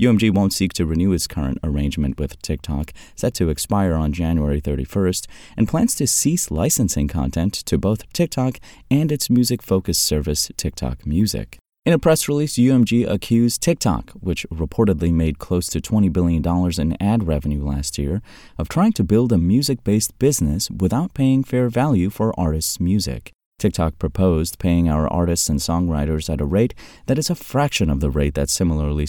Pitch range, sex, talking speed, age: 75-115 Hz, male, 170 wpm, 30-49